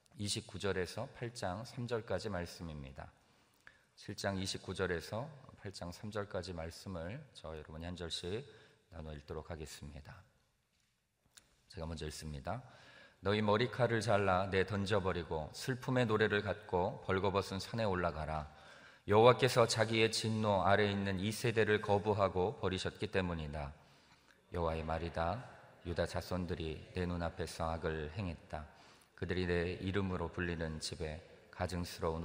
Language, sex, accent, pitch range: Korean, male, native, 85-105 Hz